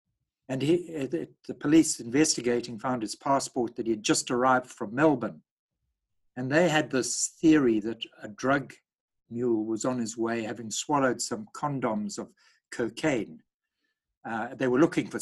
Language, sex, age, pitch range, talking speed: English, male, 60-79, 115-155 Hz, 155 wpm